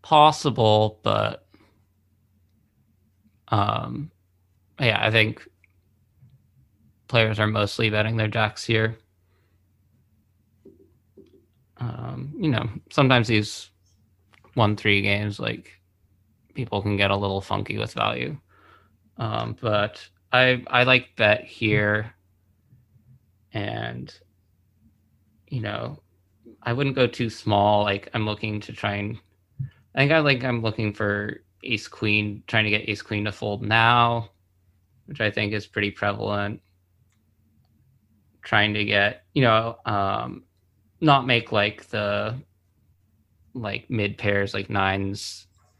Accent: American